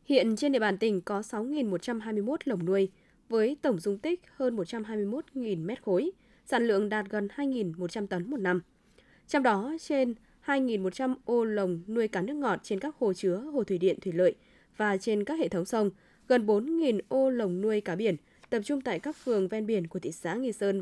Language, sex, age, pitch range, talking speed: Vietnamese, female, 10-29, 190-245 Hz, 200 wpm